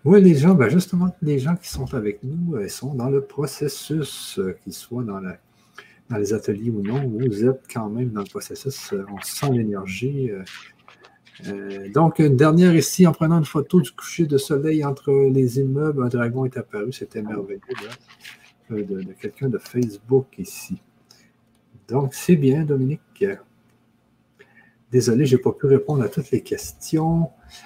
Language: French